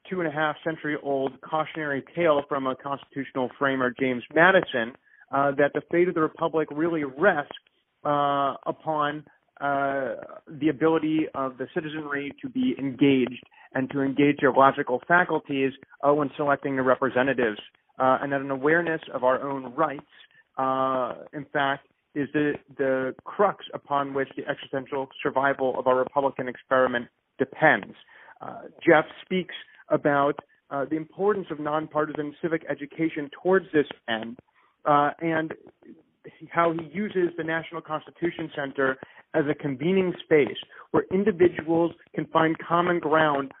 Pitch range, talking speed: 135-165 Hz, 135 wpm